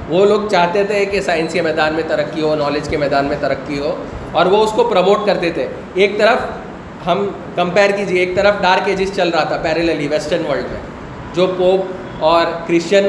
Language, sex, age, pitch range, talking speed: Urdu, male, 20-39, 180-210 Hz, 195 wpm